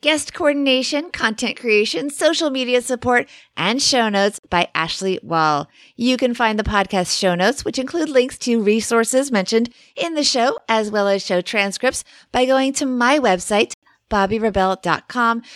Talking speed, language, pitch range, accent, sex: 155 wpm, English, 190-255 Hz, American, female